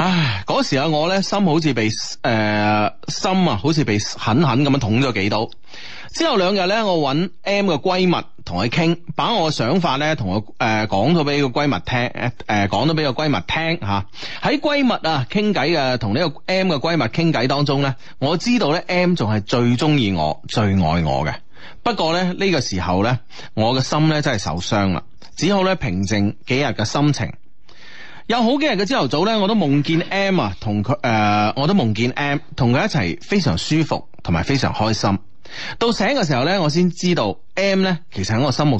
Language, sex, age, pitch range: Chinese, male, 30-49, 110-180 Hz